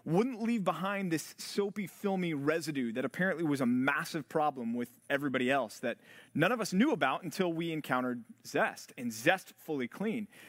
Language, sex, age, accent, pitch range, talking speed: English, male, 30-49, American, 145-215 Hz, 170 wpm